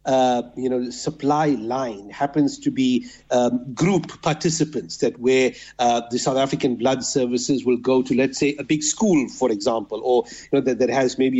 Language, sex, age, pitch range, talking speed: English, male, 50-69, 125-155 Hz, 195 wpm